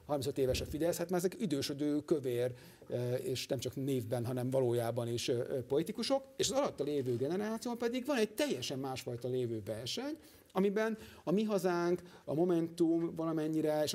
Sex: male